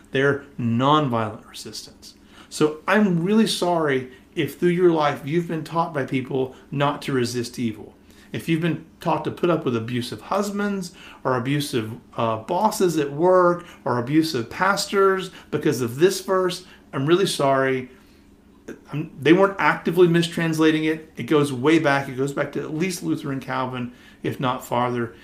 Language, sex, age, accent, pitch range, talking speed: English, male, 40-59, American, 120-170 Hz, 160 wpm